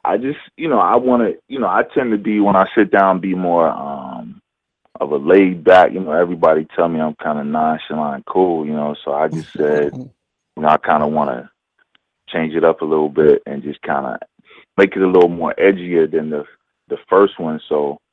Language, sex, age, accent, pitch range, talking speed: English, male, 20-39, American, 75-95 Hz, 230 wpm